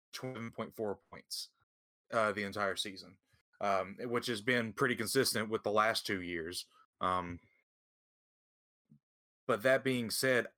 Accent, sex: American, male